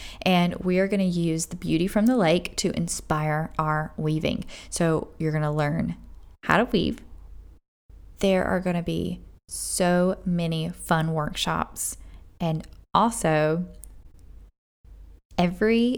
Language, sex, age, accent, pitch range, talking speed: English, female, 10-29, American, 160-195 Hz, 130 wpm